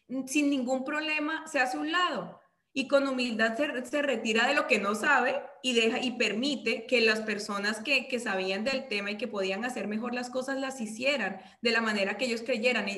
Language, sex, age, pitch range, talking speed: Spanish, female, 20-39, 205-255 Hz, 215 wpm